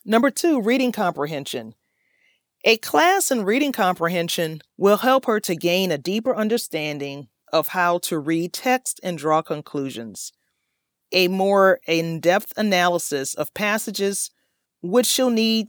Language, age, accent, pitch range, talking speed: English, 40-59, American, 165-220 Hz, 130 wpm